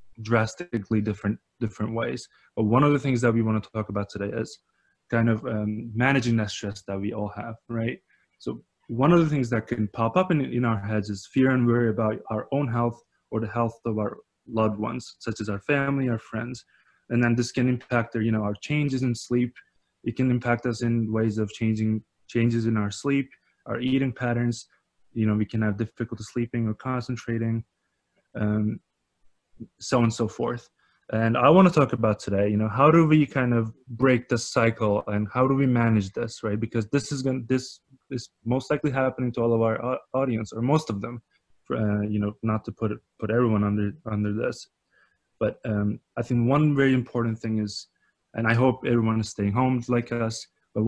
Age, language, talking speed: 20-39, English, 210 wpm